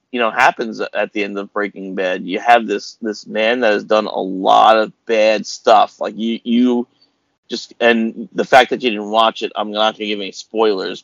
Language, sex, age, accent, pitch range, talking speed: English, male, 30-49, American, 105-120 Hz, 225 wpm